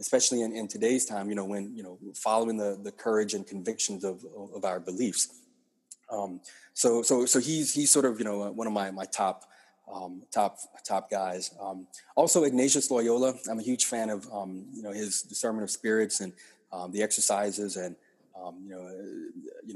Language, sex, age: English, male, 30-49